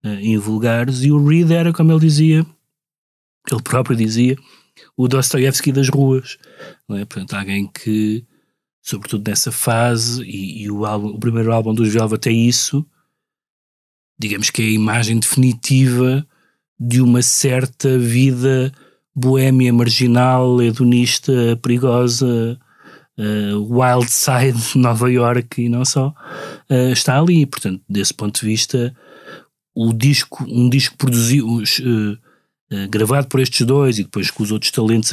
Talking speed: 140 wpm